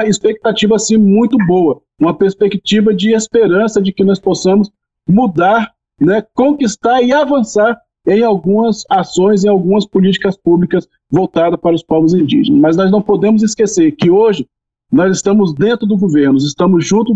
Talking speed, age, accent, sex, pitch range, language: 150 wpm, 40-59, Brazilian, male, 190-225 Hz, Portuguese